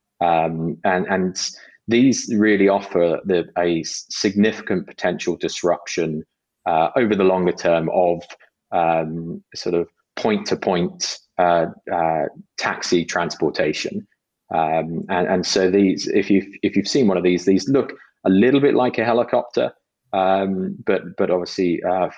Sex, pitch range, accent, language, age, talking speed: male, 85-95 Hz, British, English, 20-39, 140 wpm